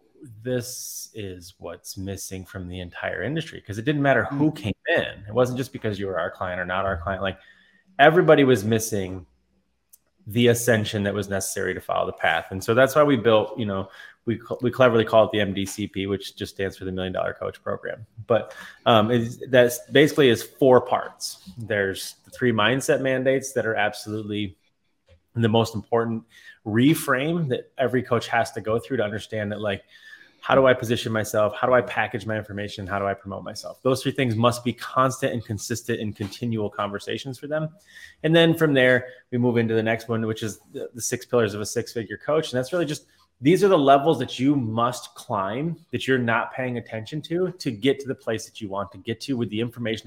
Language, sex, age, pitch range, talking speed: English, male, 20-39, 105-135 Hz, 210 wpm